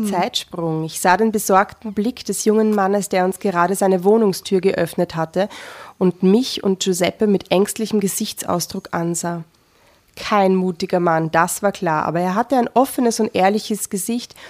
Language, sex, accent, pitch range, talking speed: German, female, German, 180-210 Hz, 155 wpm